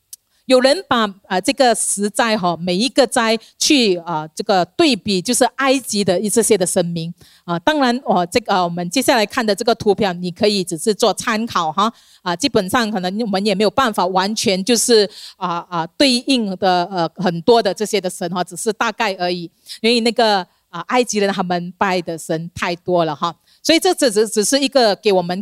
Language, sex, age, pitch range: Chinese, female, 40-59, 190-260 Hz